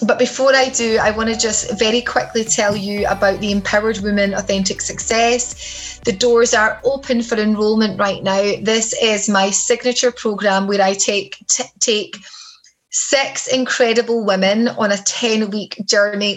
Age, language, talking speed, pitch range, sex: 20-39, English, 160 wpm, 200-235 Hz, female